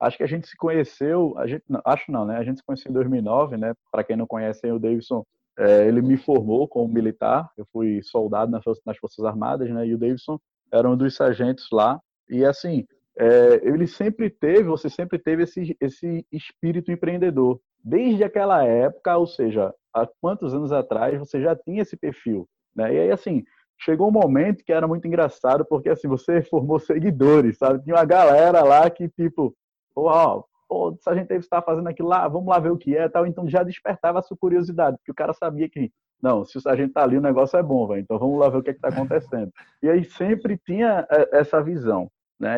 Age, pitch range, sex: 20-39, 125-175 Hz, male